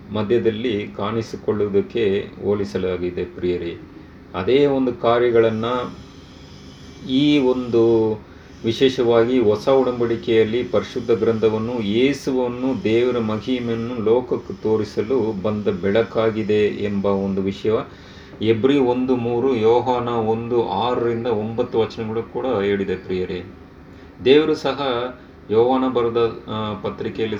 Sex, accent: male, native